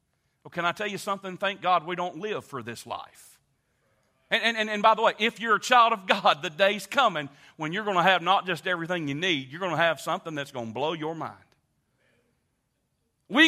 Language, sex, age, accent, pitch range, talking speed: English, male, 40-59, American, 155-230 Hz, 225 wpm